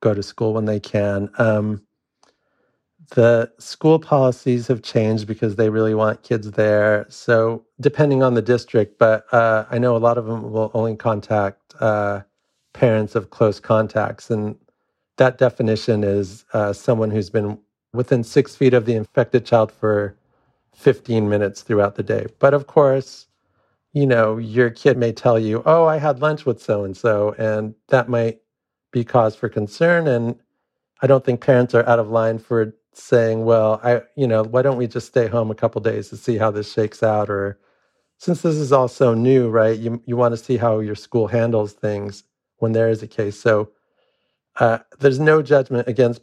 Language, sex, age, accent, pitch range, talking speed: English, male, 40-59, American, 105-125 Hz, 190 wpm